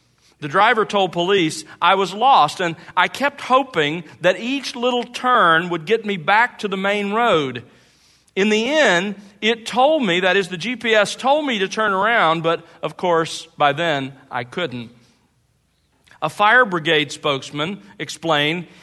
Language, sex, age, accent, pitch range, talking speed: English, male, 40-59, American, 150-215 Hz, 160 wpm